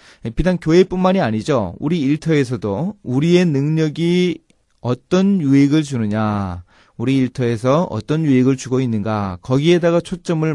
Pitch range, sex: 105-160 Hz, male